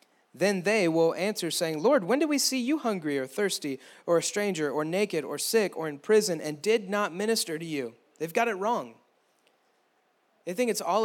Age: 30-49